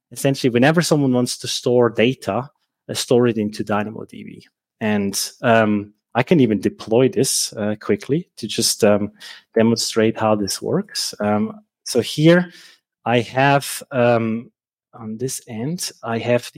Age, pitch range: 20-39, 110-125 Hz